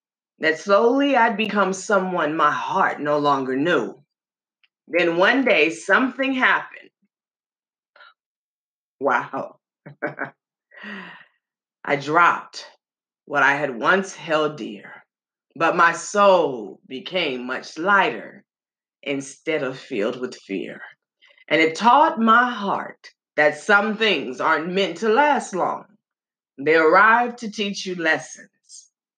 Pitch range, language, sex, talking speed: 155-235 Hz, English, female, 110 wpm